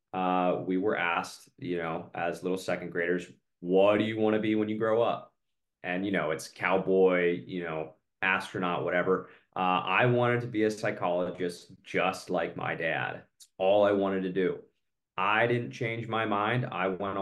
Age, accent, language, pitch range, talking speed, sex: 20-39, American, English, 90-115 Hz, 185 wpm, male